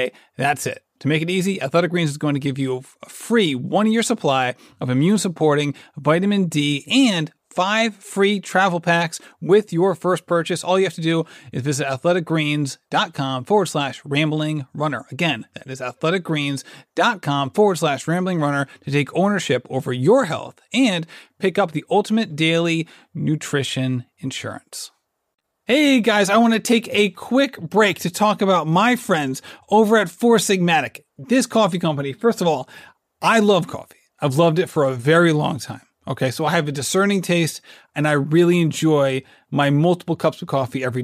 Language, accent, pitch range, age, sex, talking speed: English, American, 145-195 Hz, 30-49, male, 170 wpm